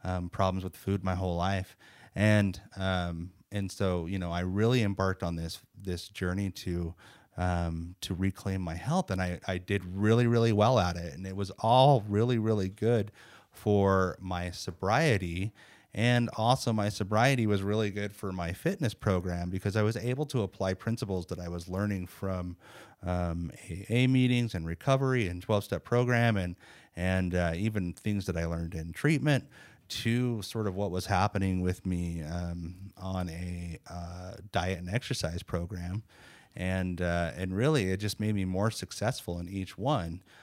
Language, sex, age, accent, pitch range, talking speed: English, male, 30-49, American, 90-110 Hz, 170 wpm